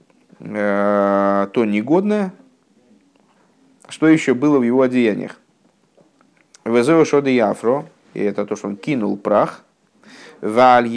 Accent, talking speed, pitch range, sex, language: native, 105 wpm, 110-150 Hz, male, Russian